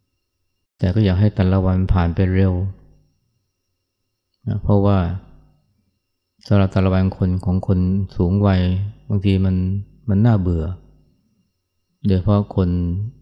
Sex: male